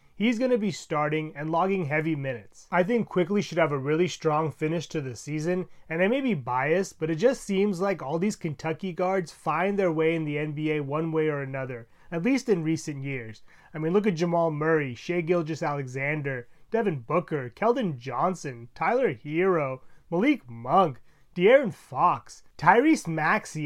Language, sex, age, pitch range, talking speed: English, male, 30-49, 150-195 Hz, 180 wpm